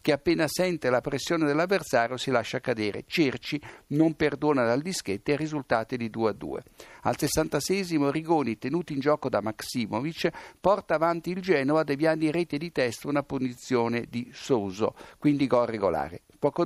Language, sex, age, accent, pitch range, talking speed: Italian, male, 60-79, native, 125-165 Hz, 155 wpm